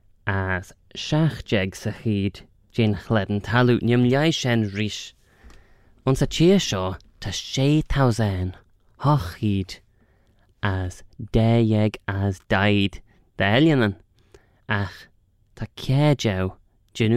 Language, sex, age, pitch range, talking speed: English, male, 20-39, 95-120 Hz, 90 wpm